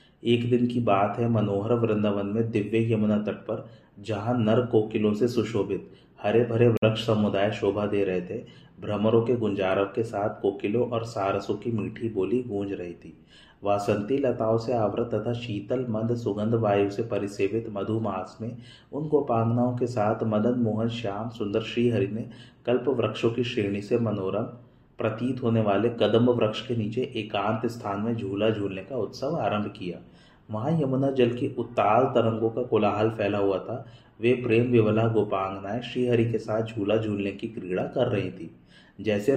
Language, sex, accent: Hindi, male, native